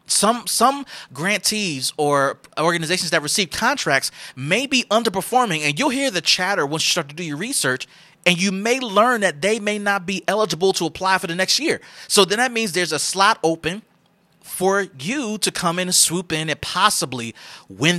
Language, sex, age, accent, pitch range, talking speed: English, male, 30-49, American, 145-195 Hz, 195 wpm